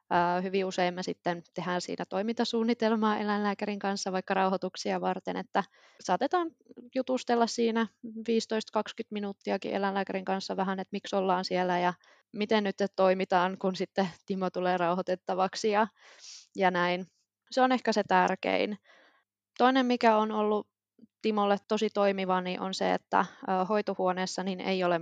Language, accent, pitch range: Finnish, native, 185-225 Hz